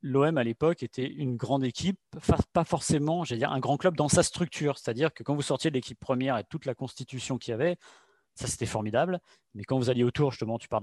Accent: French